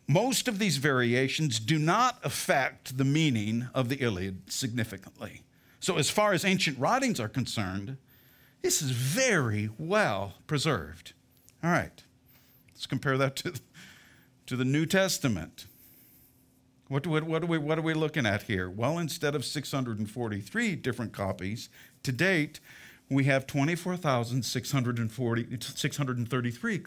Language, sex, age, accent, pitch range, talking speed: English, male, 50-69, American, 120-155 Hz, 130 wpm